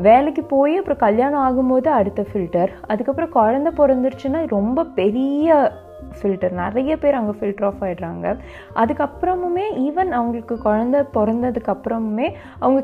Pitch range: 205-275 Hz